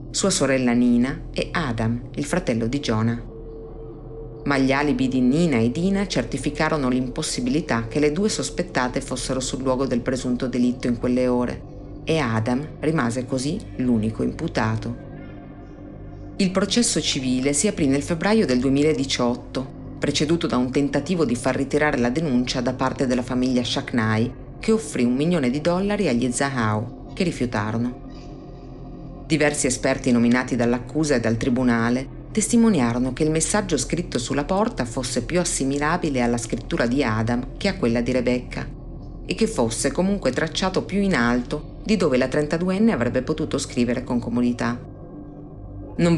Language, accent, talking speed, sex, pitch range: Italian, native, 150 wpm, female, 125-155 Hz